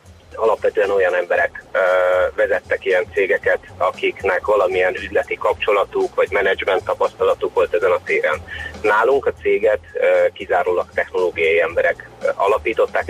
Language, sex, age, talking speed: Hungarian, male, 30-49, 125 wpm